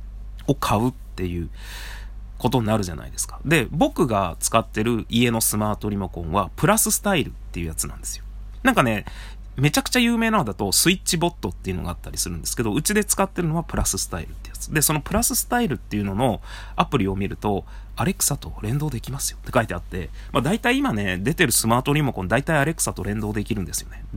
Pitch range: 100-160 Hz